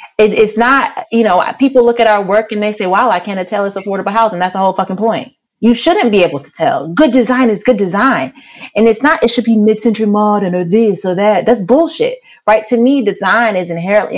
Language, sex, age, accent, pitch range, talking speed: English, female, 30-49, American, 185-255 Hz, 235 wpm